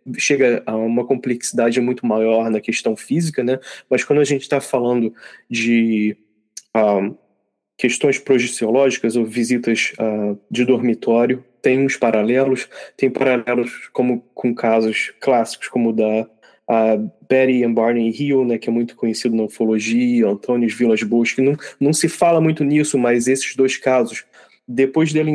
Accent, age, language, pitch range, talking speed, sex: Brazilian, 20-39, Portuguese, 115-130 Hz, 150 wpm, male